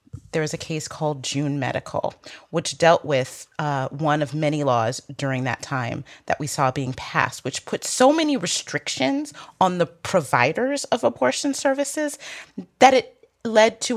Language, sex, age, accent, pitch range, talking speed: English, female, 30-49, American, 145-185 Hz, 165 wpm